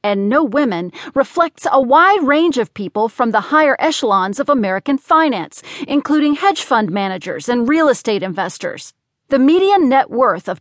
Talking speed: 165 wpm